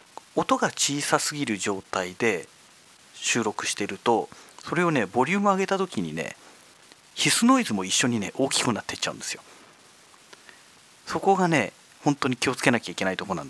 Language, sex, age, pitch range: Japanese, male, 40-59, 100-145 Hz